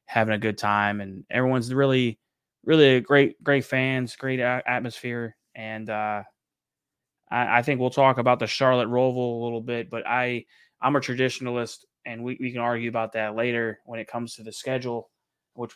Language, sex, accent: English, male, American